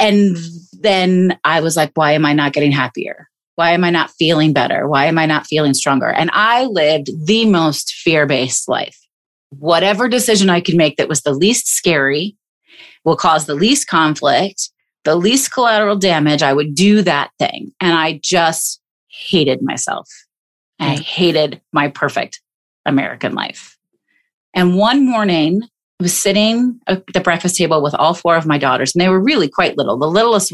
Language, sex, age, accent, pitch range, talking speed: English, female, 30-49, American, 150-200 Hz, 175 wpm